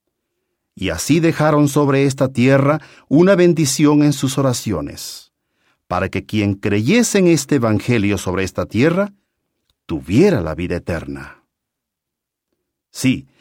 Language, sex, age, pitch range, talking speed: English, male, 50-69, 100-155 Hz, 115 wpm